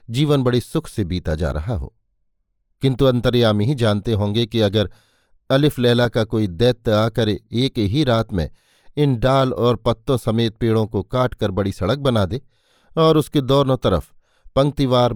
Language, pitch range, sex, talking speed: Hindi, 105-135 Hz, male, 165 wpm